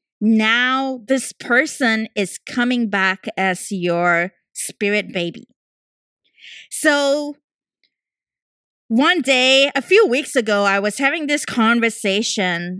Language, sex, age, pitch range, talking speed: English, female, 20-39, 195-255 Hz, 105 wpm